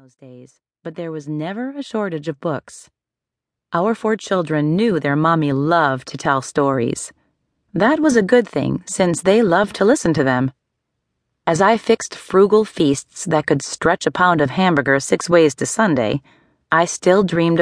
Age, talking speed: 30-49, 175 wpm